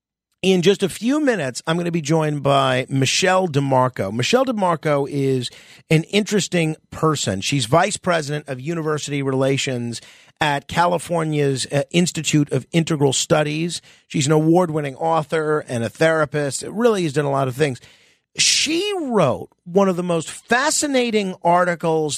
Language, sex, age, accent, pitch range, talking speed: English, male, 40-59, American, 135-175 Hz, 145 wpm